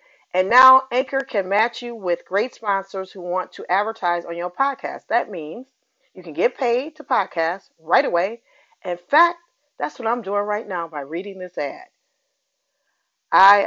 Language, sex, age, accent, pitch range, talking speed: English, female, 40-59, American, 170-245 Hz, 170 wpm